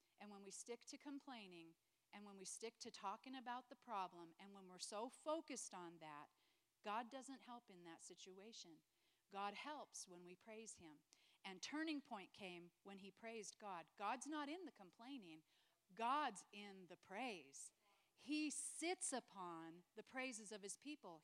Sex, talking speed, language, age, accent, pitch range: female, 165 wpm, English, 40-59, American, 180-255 Hz